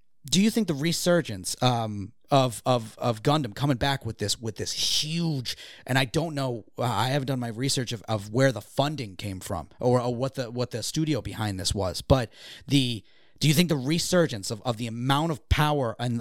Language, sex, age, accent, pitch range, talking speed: English, male, 30-49, American, 110-145 Hz, 210 wpm